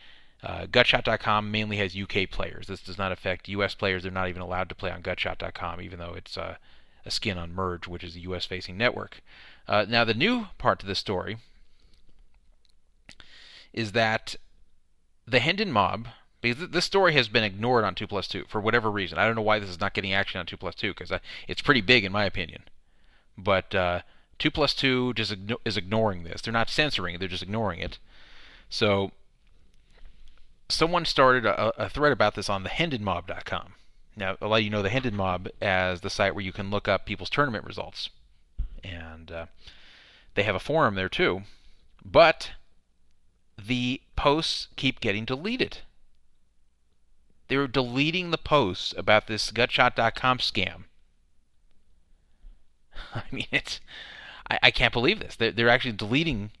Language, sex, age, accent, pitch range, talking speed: English, male, 30-49, American, 90-115 Hz, 170 wpm